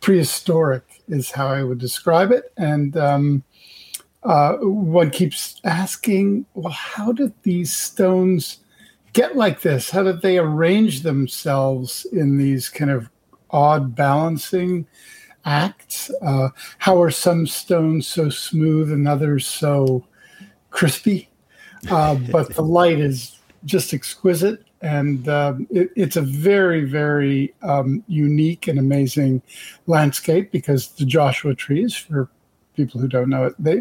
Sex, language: male, English